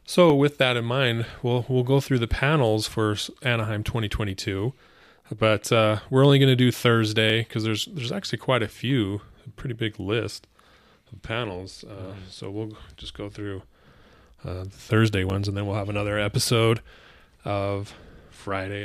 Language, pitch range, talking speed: English, 100-120 Hz, 170 wpm